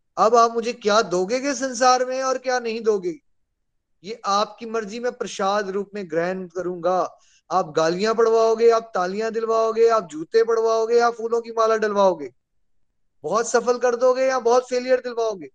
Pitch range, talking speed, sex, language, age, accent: 190-235 Hz, 165 wpm, male, Hindi, 20-39, native